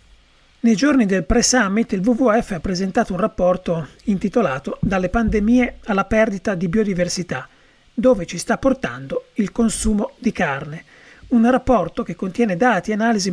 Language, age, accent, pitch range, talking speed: Italian, 40-59, native, 180-245 Hz, 145 wpm